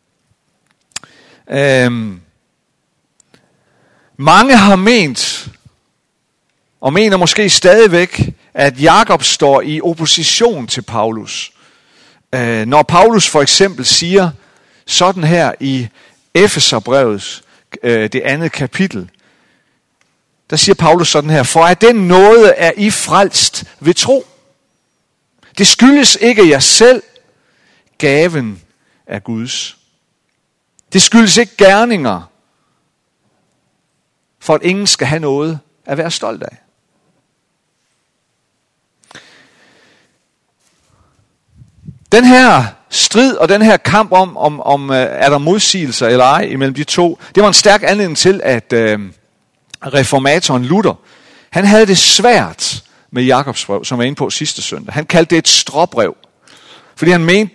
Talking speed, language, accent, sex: 115 wpm, Danish, native, male